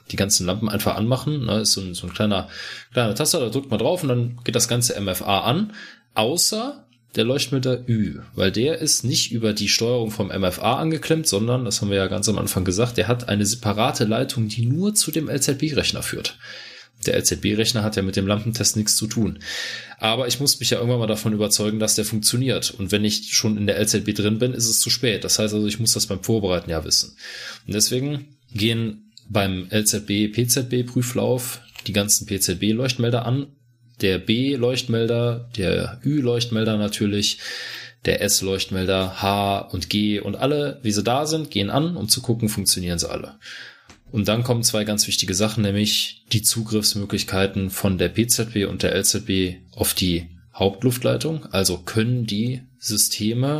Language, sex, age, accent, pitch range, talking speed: German, male, 20-39, German, 100-125 Hz, 180 wpm